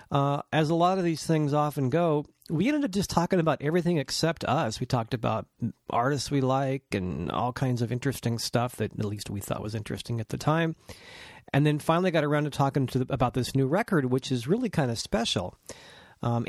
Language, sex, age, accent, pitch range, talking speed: English, male, 40-59, American, 120-155 Hz, 210 wpm